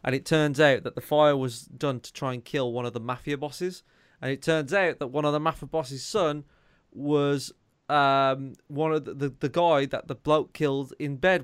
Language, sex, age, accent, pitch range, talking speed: English, male, 20-39, British, 120-150 Hz, 225 wpm